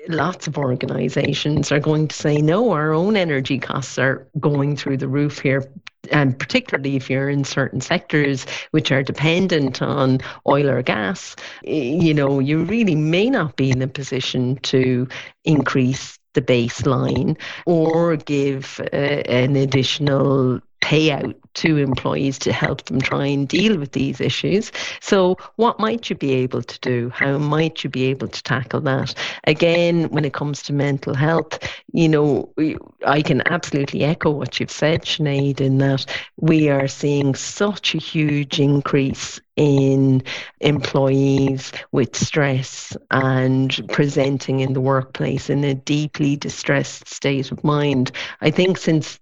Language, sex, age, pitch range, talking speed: English, female, 40-59, 135-155 Hz, 150 wpm